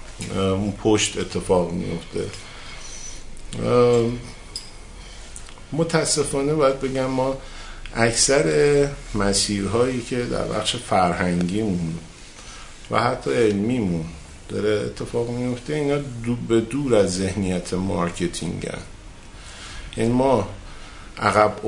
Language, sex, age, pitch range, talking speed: Persian, male, 50-69, 90-115 Hz, 95 wpm